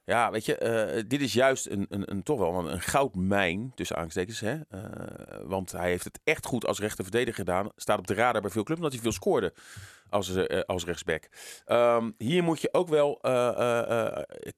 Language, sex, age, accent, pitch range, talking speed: Dutch, male, 40-59, Dutch, 95-130 Hz, 210 wpm